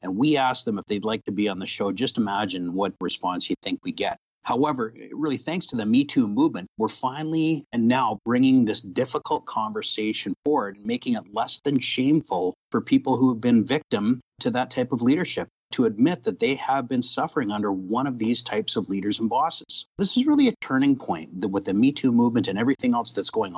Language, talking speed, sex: English, 215 wpm, male